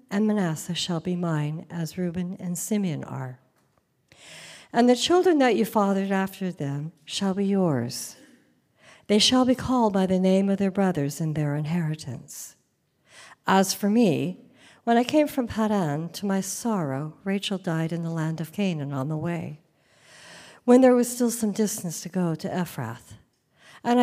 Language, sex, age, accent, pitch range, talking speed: English, female, 50-69, American, 155-215 Hz, 165 wpm